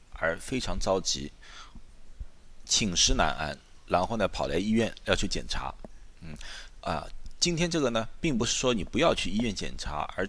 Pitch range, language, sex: 100-160 Hz, Chinese, male